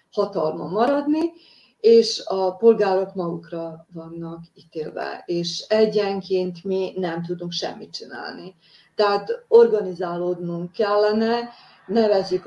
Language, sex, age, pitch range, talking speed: Hungarian, female, 30-49, 180-225 Hz, 90 wpm